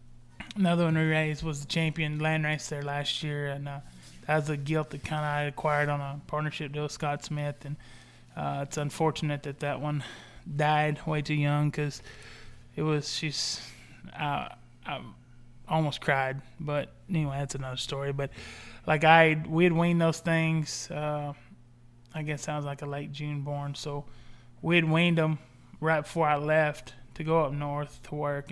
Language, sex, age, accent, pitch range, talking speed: English, male, 20-39, American, 140-160 Hz, 185 wpm